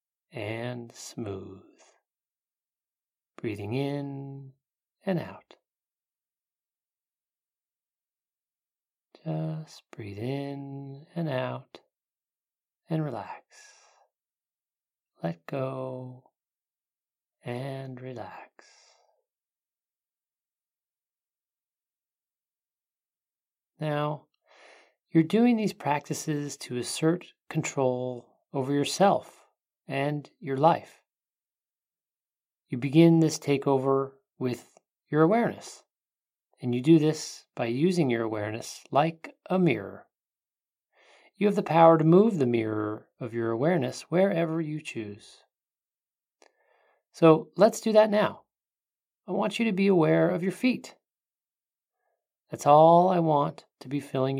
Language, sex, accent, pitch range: English, male, American, 130-165 Hz